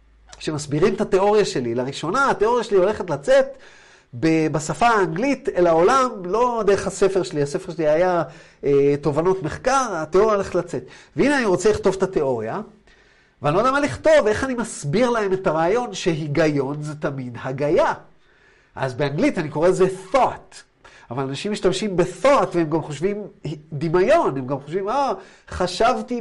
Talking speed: 145 wpm